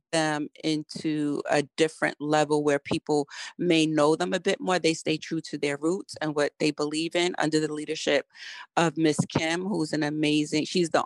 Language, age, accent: English, 30-49, American